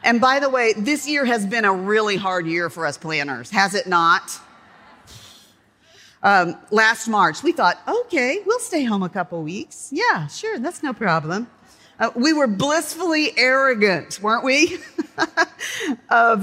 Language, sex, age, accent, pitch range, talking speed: English, female, 40-59, American, 175-250 Hz, 155 wpm